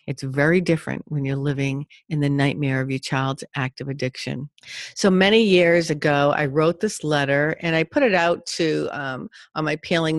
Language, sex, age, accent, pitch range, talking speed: English, female, 40-59, American, 145-175 Hz, 190 wpm